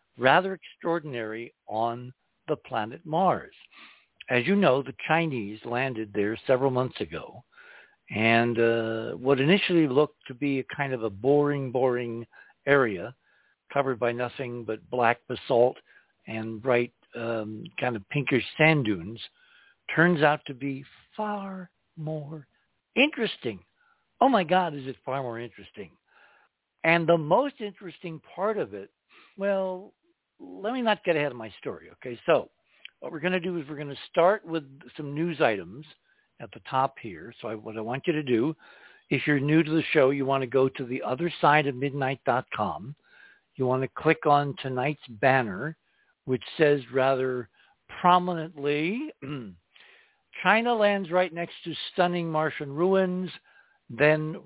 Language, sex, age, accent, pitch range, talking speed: English, male, 60-79, American, 125-175 Hz, 155 wpm